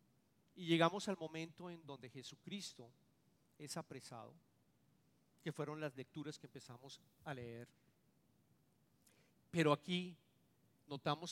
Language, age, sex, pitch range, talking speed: English, 40-59, male, 145-185 Hz, 105 wpm